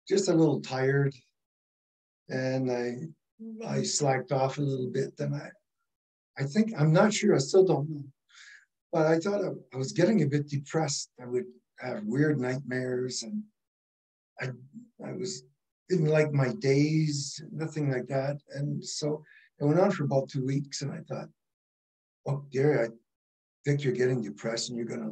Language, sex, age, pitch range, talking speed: English, male, 60-79, 125-155 Hz, 170 wpm